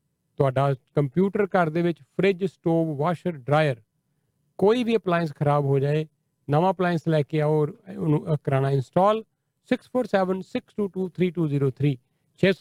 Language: Punjabi